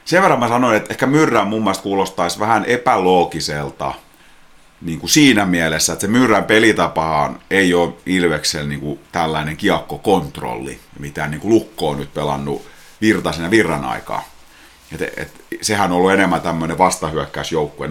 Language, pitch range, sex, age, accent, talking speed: Finnish, 75-95 Hz, male, 30-49, native, 145 wpm